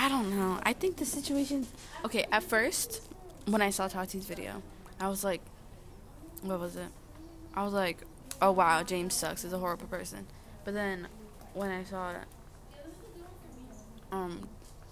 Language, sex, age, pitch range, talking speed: English, female, 20-39, 185-255 Hz, 155 wpm